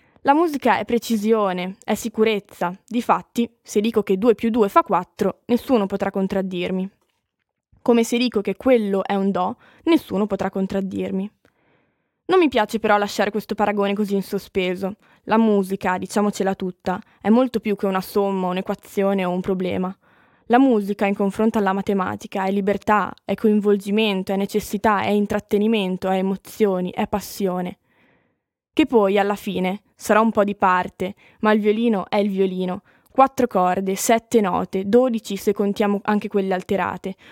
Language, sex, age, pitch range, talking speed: Italian, female, 20-39, 195-230 Hz, 155 wpm